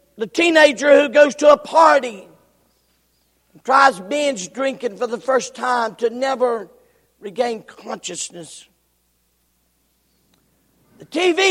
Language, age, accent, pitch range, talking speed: English, 50-69, American, 225-295 Hz, 110 wpm